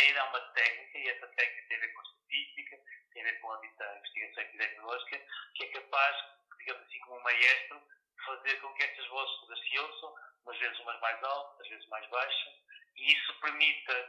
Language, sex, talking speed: Portuguese, male, 200 wpm